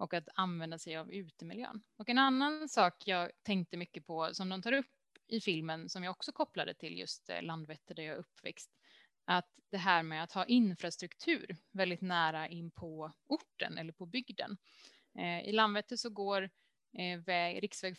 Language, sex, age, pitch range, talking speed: Swedish, female, 20-39, 170-220 Hz, 165 wpm